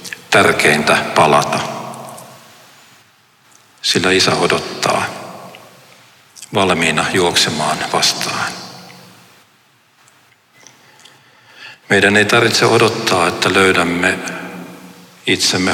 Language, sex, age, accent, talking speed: Finnish, male, 60-79, native, 55 wpm